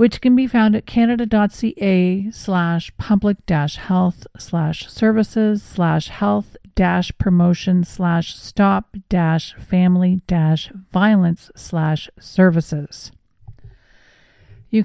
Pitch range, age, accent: 175-200 Hz, 50-69, American